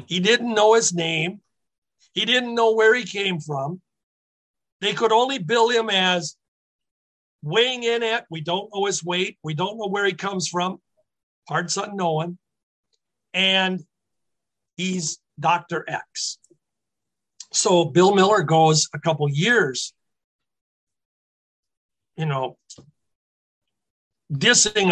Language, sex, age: English, male, 50-69